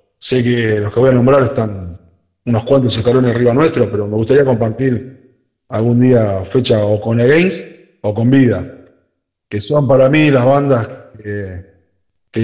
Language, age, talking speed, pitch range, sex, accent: Spanish, 40-59, 165 wpm, 105-135 Hz, male, Argentinian